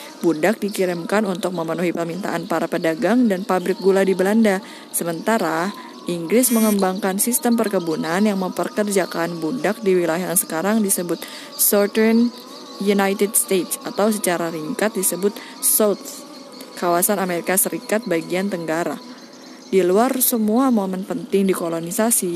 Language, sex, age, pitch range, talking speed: Indonesian, female, 20-39, 175-220 Hz, 120 wpm